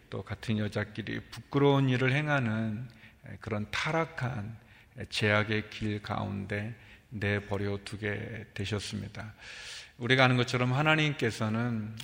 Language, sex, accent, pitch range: Korean, male, native, 105-125 Hz